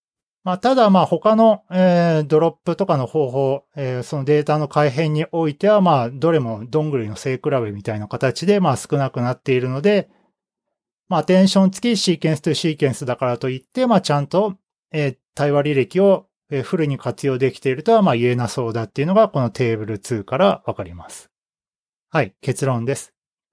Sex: male